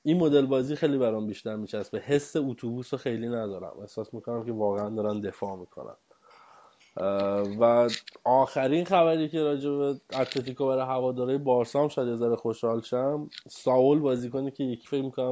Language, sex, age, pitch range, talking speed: Persian, male, 20-39, 110-130 Hz, 150 wpm